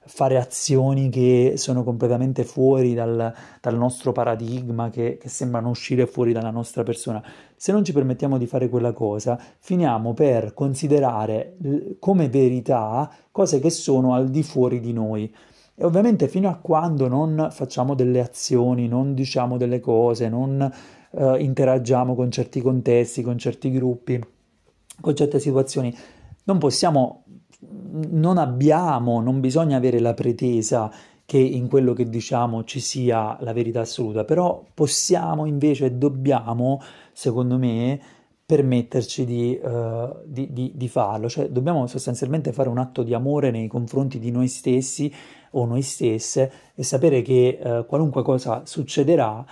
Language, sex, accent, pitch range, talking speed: Italian, male, native, 120-145 Hz, 145 wpm